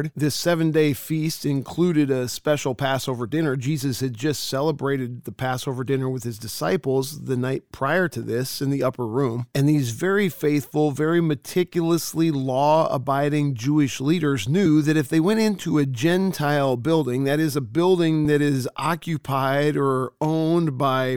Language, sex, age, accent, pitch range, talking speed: English, male, 40-59, American, 135-160 Hz, 155 wpm